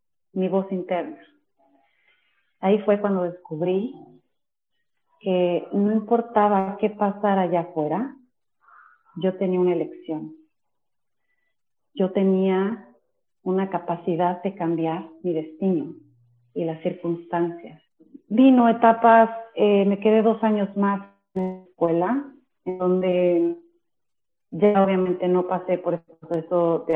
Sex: female